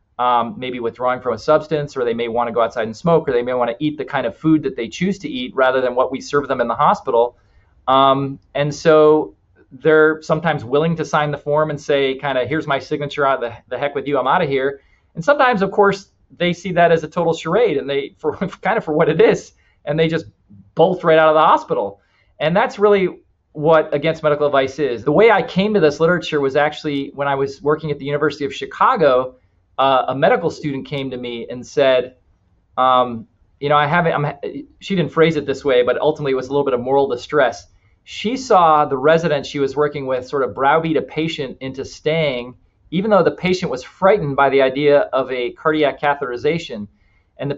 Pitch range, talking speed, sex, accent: 130-160 Hz, 230 wpm, male, American